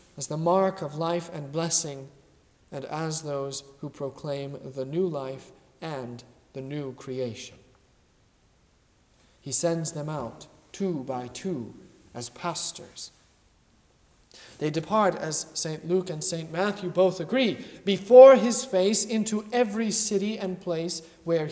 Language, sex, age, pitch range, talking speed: English, male, 40-59, 135-185 Hz, 130 wpm